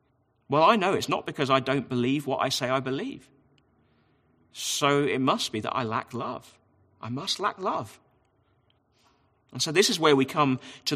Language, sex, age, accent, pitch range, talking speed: English, male, 40-59, British, 120-145 Hz, 185 wpm